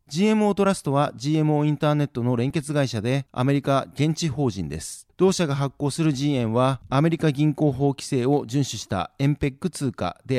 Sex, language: male, Japanese